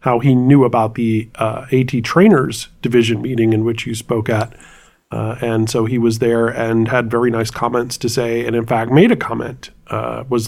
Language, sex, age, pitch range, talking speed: English, male, 30-49, 115-135 Hz, 205 wpm